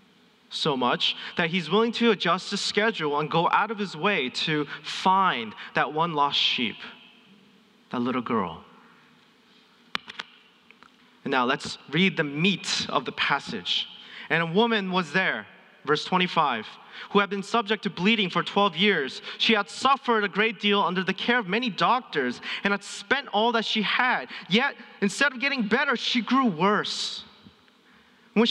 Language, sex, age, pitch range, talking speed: English, male, 30-49, 195-235 Hz, 160 wpm